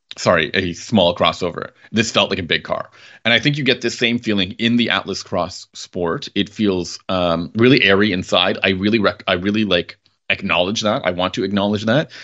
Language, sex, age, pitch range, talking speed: English, male, 30-49, 95-125 Hz, 205 wpm